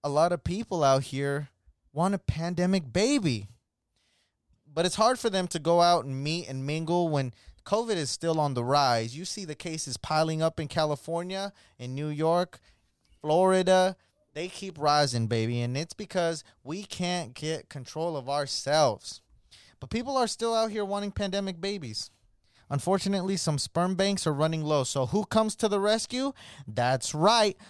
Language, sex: English, male